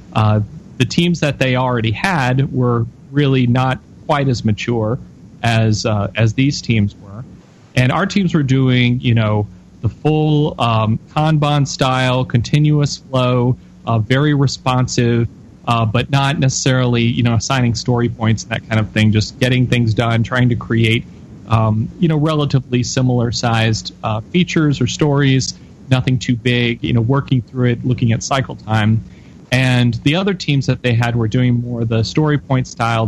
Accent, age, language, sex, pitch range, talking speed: American, 30-49, English, male, 110-130 Hz, 170 wpm